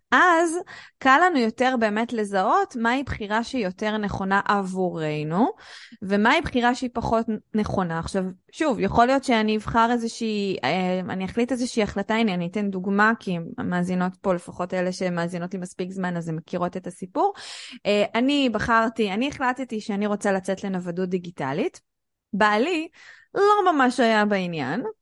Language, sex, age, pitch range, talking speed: Hebrew, female, 20-39, 200-255 Hz, 145 wpm